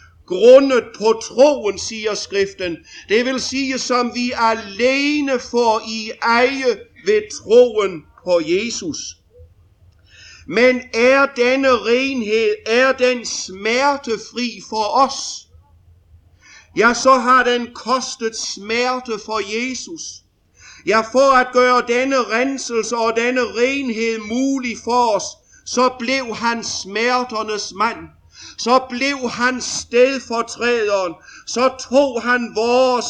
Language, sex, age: English, male, 50-69